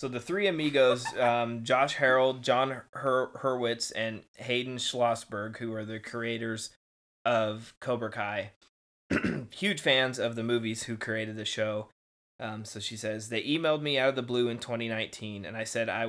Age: 20-39